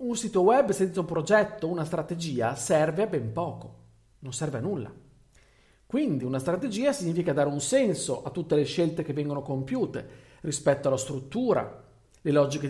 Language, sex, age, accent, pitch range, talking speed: Italian, male, 40-59, native, 130-180 Hz, 165 wpm